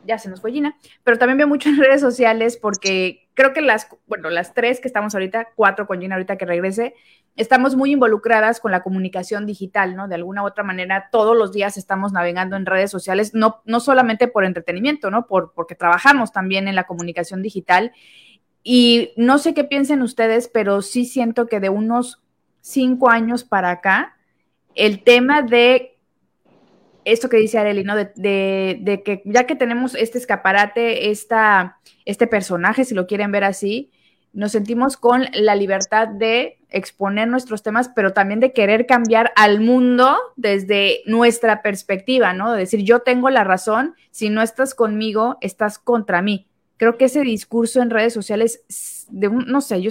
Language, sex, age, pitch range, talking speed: Spanish, female, 20-39, 195-240 Hz, 180 wpm